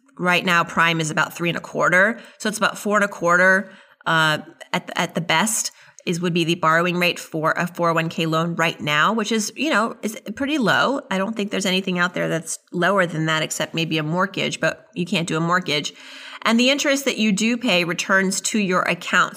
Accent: American